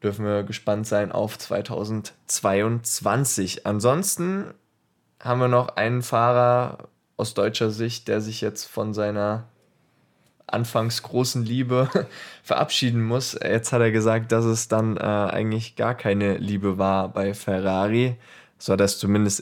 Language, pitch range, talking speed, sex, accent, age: German, 100-115 Hz, 140 wpm, male, German, 20-39